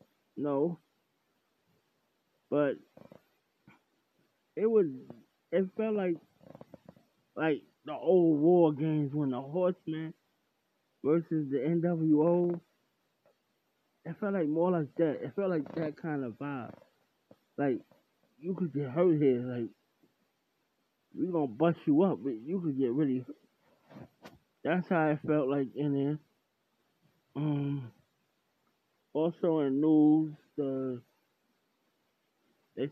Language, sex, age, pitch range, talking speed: English, male, 20-39, 130-160 Hz, 115 wpm